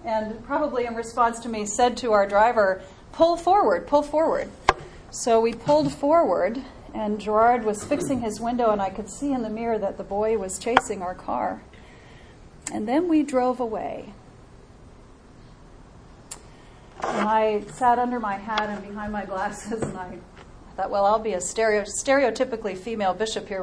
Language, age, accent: English, 40-59, American